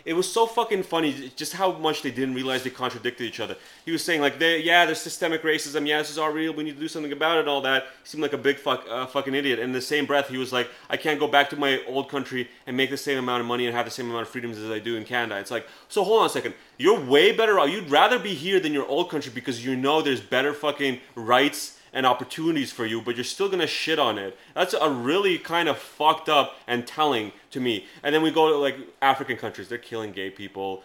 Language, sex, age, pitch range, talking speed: English, male, 30-49, 125-165 Hz, 275 wpm